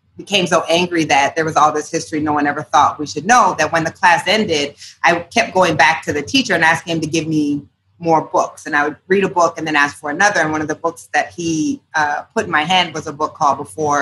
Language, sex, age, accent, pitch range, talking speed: English, female, 30-49, American, 145-170 Hz, 275 wpm